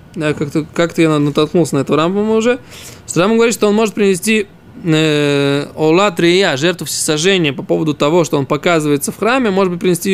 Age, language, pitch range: 20-39, Russian, 155-200 Hz